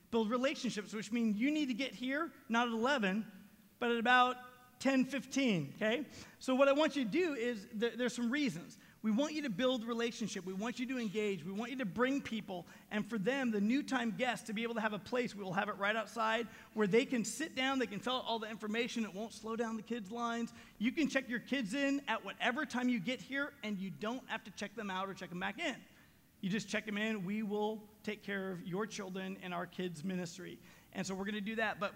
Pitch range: 210-250 Hz